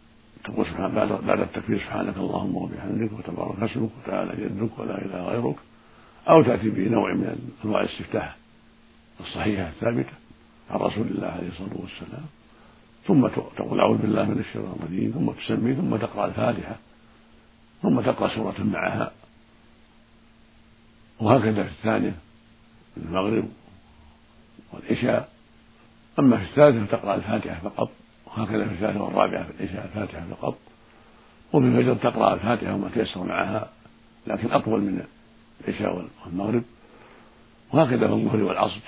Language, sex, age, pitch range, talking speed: Arabic, male, 60-79, 100-115 Hz, 120 wpm